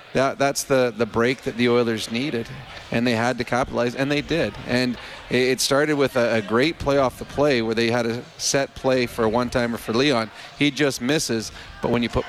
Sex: male